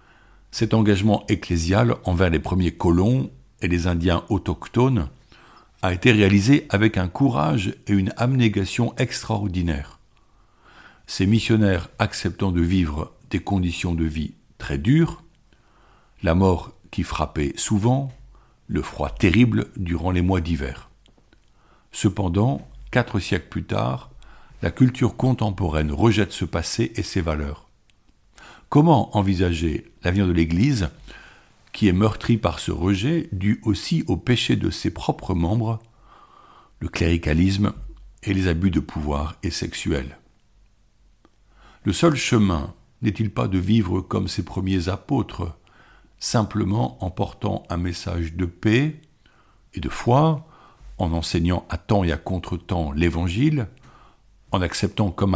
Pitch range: 85-115 Hz